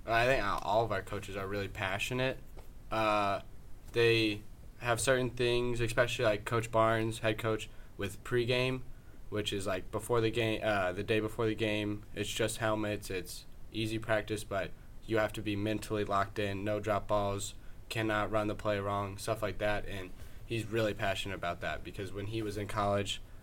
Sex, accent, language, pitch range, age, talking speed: male, American, English, 100-110 Hz, 10-29, 180 wpm